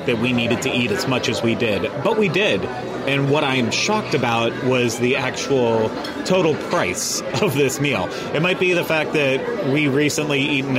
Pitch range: 120-140 Hz